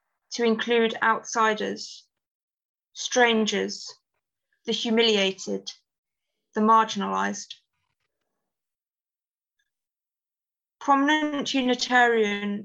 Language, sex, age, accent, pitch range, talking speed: English, female, 20-39, British, 205-245 Hz, 45 wpm